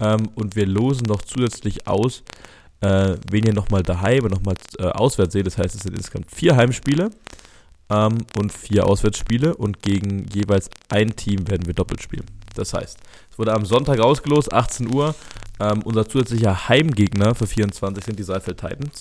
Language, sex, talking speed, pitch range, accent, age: German, male, 160 wpm, 95-115 Hz, German, 20-39